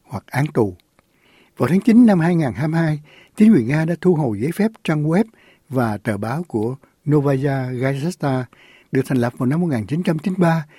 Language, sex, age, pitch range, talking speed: Vietnamese, male, 60-79, 125-170 Hz, 165 wpm